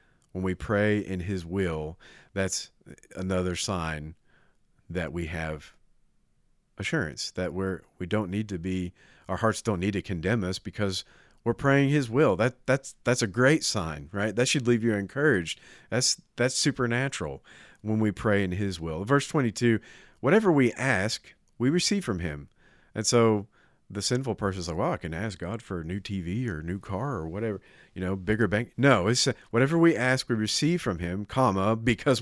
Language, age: English, 40-59